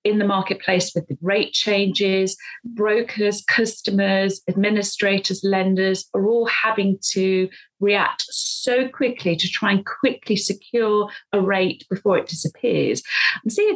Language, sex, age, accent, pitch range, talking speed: English, female, 30-49, British, 175-205 Hz, 135 wpm